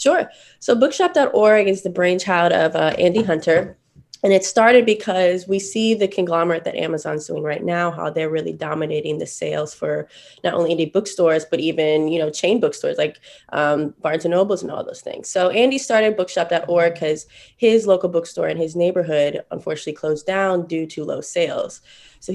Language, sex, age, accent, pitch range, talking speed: English, female, 20-39, American, 155-195 Hz, 185 wpm